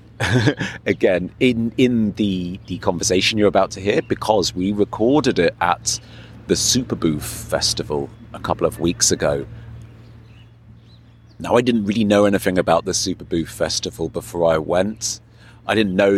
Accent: British